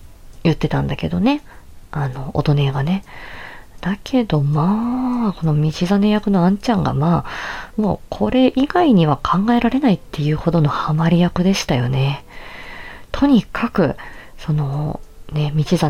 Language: Japanese